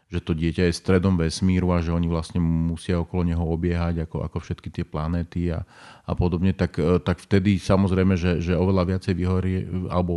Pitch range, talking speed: 85-95 Hz, 190 wpm